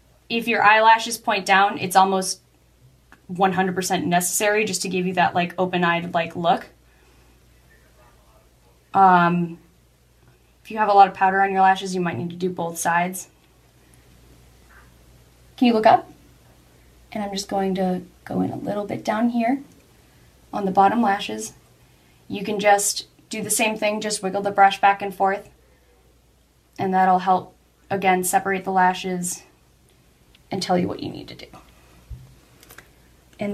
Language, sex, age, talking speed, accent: English, female, 10-29, 155 wpm, American